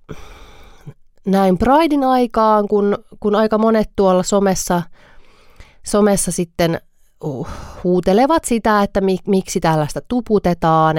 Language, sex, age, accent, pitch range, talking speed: Finnish, female, 30-49, native, 145-185 Hz, 105 wpm